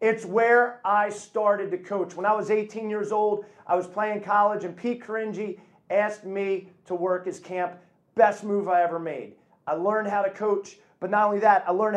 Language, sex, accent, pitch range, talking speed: English, male, American, 180-215 Hz, 205 wpm